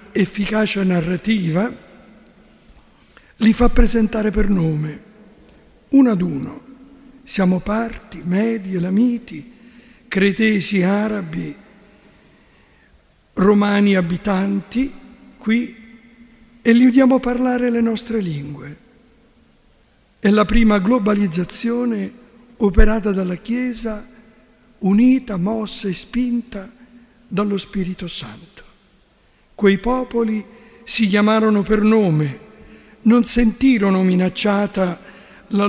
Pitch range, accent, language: 190-240 Hz, native, Italian